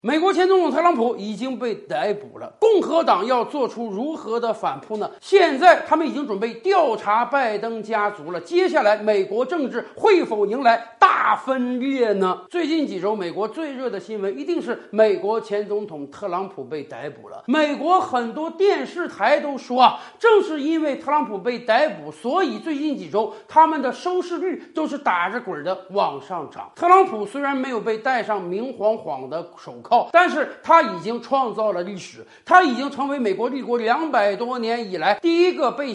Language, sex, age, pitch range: Chinese, male, 50-69, 215-325 Hz